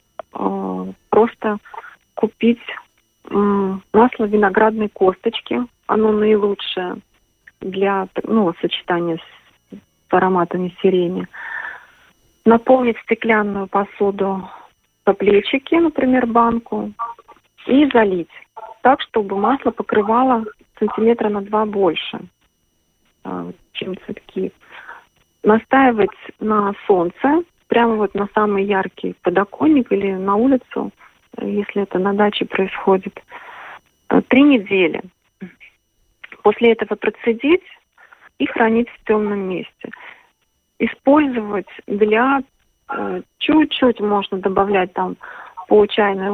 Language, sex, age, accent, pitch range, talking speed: Russian, female, 40-59, native, 195-235 Hz, 90 wpm